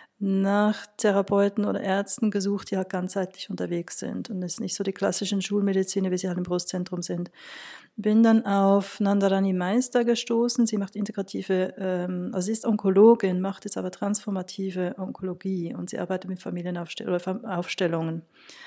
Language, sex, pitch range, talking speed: German, female, 185-215 Hz, 150 wpm